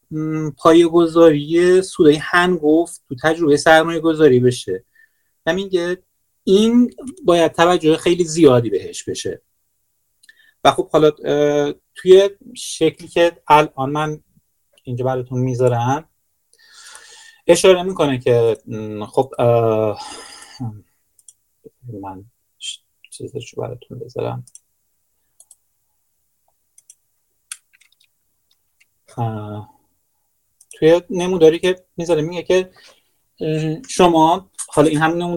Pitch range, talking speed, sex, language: 125-175 Hz, 85 wpm, male, Persian